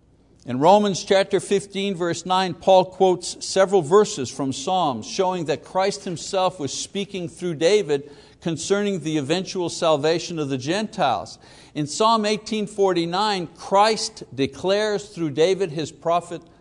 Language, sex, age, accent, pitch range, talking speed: English, male, 60-79, American, 135-195 Hz, 130 wpm